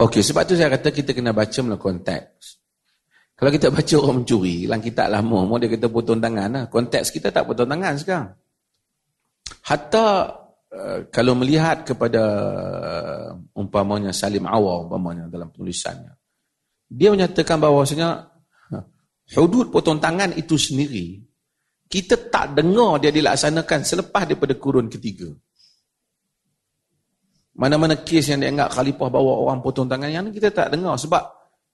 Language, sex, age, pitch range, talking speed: Malay, male, 40-59, 115-165 Hz, 130 wpm